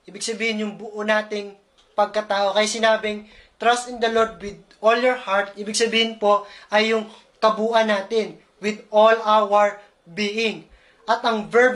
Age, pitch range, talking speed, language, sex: 20-39, 205-230 Hz, 155 wpm, Filipino, male